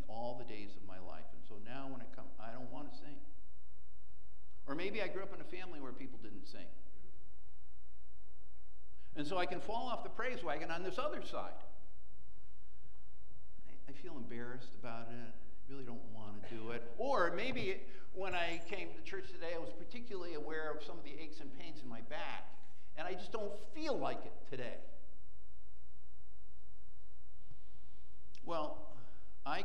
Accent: American